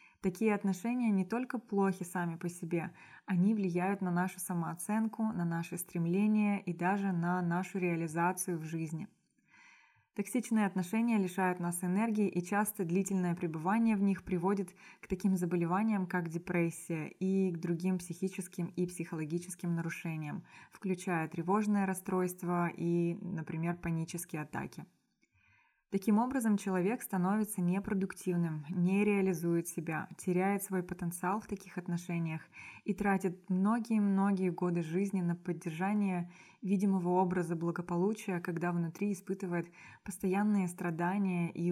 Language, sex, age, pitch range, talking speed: Russian, female, 20-39, 175-195 Hz, 120 wpm